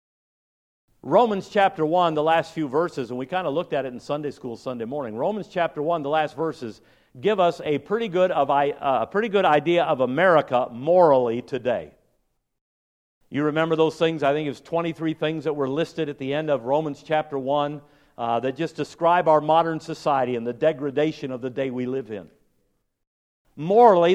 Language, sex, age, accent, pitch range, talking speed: English, male, 50-69, American, 140-175 Hz, 190 wpm